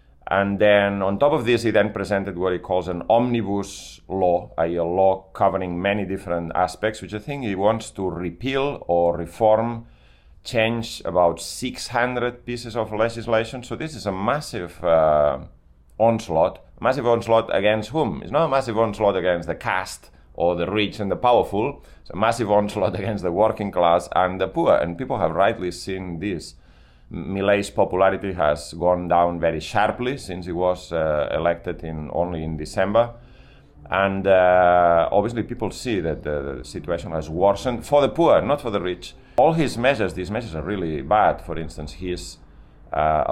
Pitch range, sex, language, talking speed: 85-110 Hz, male, English, 170 wpm